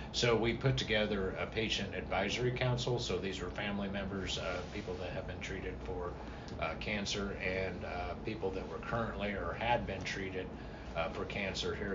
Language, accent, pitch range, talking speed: English, American, 90-115 Hz, 180 wpm